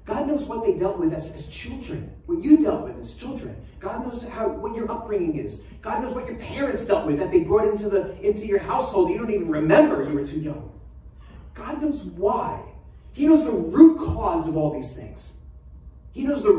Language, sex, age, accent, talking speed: English, male, 30-49, American, 215 wpm